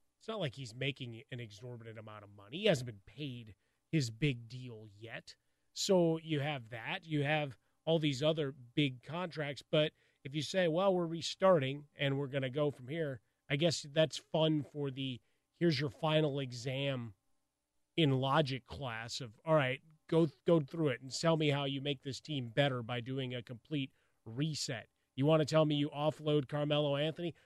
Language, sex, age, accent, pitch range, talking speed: English, male, 30-49, American, 125-150 Hz, 190 wpm